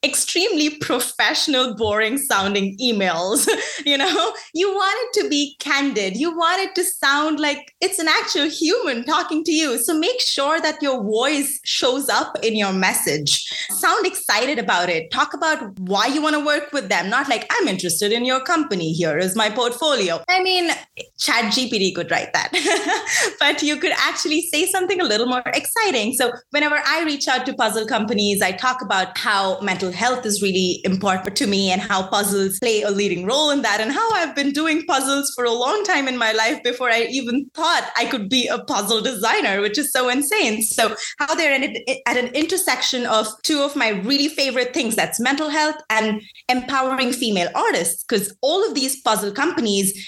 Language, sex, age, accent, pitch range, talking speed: English, female, 20-39, Indian, 210-310 Hz, 190 wpm